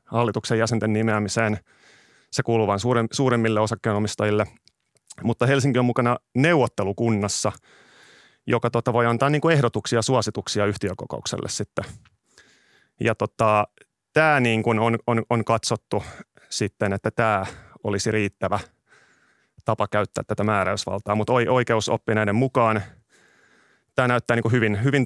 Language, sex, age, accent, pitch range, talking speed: Finnish, male, 30-49, native, 105-120 Hz, 120 wpm